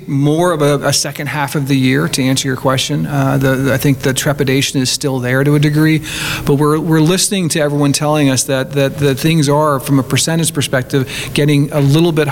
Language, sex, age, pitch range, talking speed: English, male, 40-59, 135-150 Hz, 230 wpm